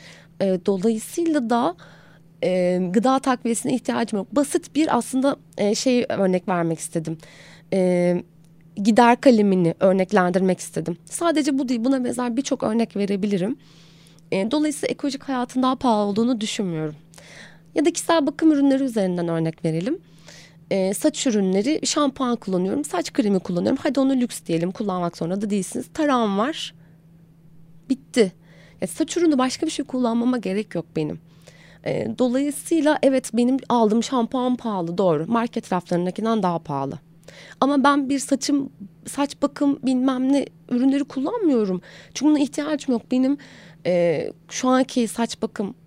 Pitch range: 175-260 Hz